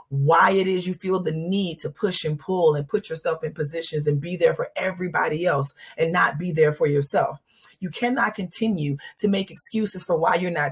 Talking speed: 215 wpm